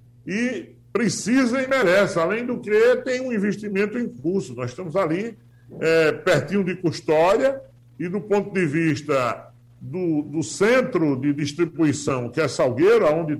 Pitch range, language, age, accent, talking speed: 140-200 Hz, Portuguese, 60-79, Brazilian, 145 wpm